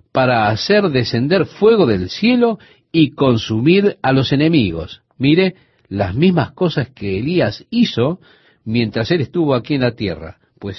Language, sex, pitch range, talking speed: Spanish, male, 110-170 Hz, 145 wpm